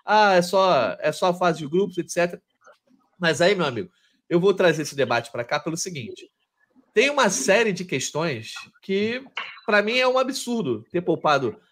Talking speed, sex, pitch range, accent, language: 185 wpm, male, 175-230 Hz, Brazilian, Portuguese